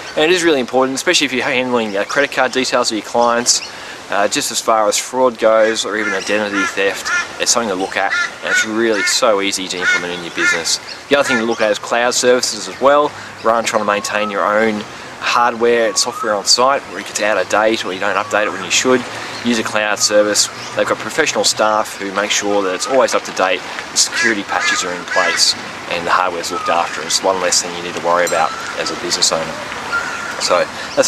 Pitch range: 110-130 Hz